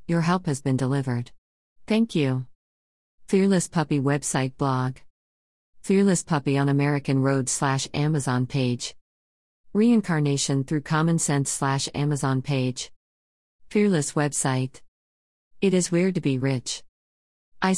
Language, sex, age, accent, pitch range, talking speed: English, female, 50-69, American, 130-165 Hz, 120 wpm